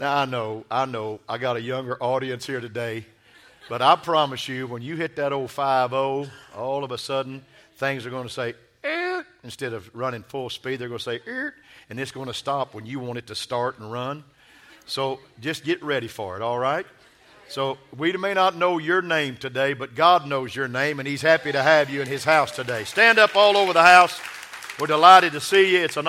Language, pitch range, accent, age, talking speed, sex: English, 120-155 Hz, American, 50-69, 230 wpm, male